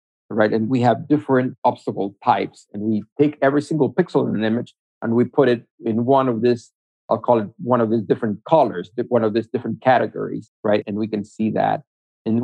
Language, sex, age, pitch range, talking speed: English, male, 50-69, 110-130 Hz, 210 wpm